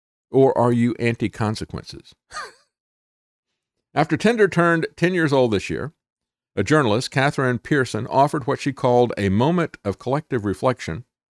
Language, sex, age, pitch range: English, male, 50-69, 100-140 Hz